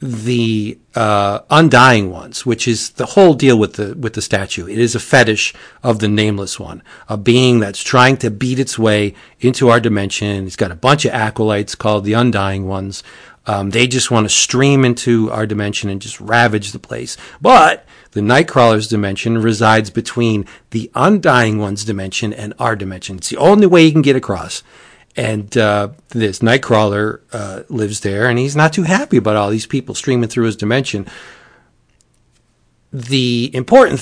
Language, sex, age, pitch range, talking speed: English, male, 40-59, 105-125 Hz, 175 wpm